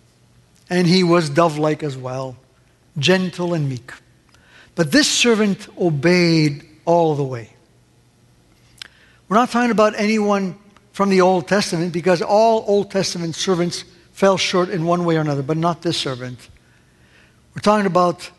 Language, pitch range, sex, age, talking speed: English, 160-210 Hz, male, 60-79, 145 wpm